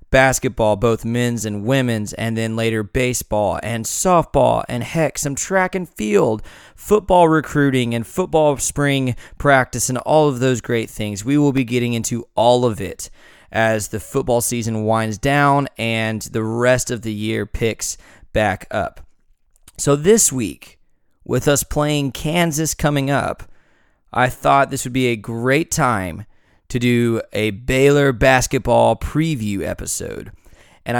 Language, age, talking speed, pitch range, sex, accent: English, 20-39, 150 wpm, 110-145 Hz, male, American